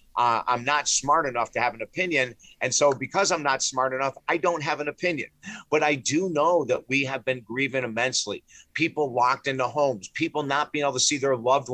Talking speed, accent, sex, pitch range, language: 220 wpm, American, male, 115-145 Hz, English